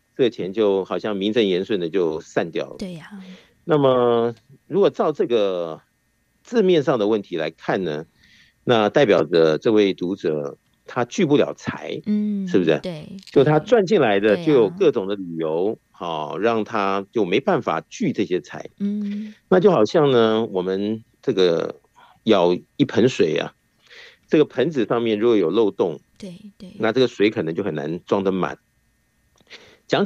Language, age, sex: Chinese, 50-69, male